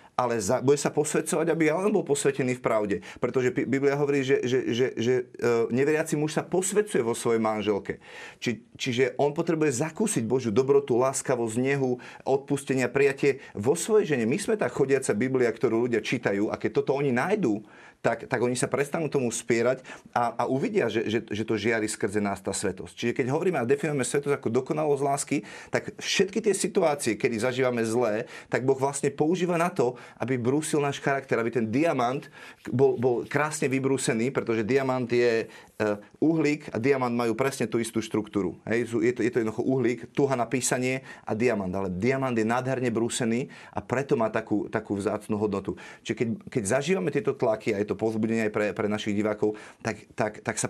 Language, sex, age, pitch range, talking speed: Slovak, male, 30-49, 110-140 Hz, 190 wpm